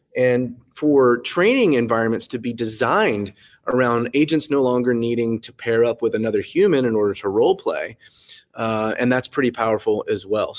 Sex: male